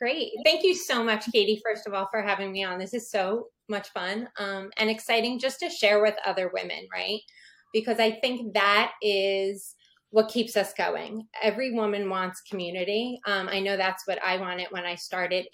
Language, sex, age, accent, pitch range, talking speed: English, female, 20-39, American, 190-220 Hz, 195 wpm